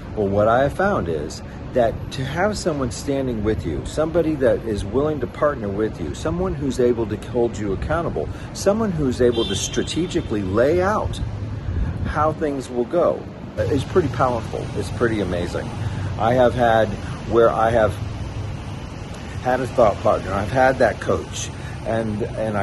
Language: English